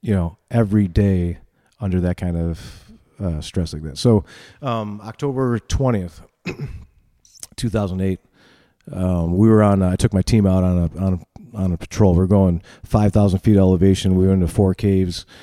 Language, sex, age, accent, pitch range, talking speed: English, male, 40-59, American, 90-105 Hz, 175 wpm